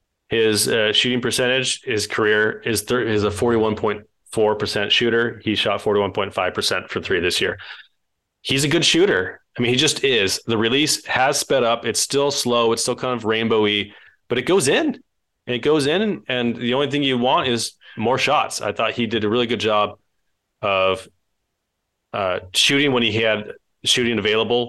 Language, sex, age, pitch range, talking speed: English, male, 30-49, 105-125 Hz, 195 wpm